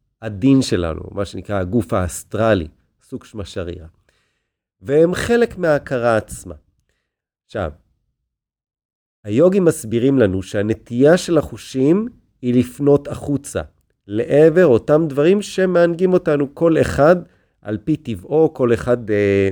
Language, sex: Hebrew, male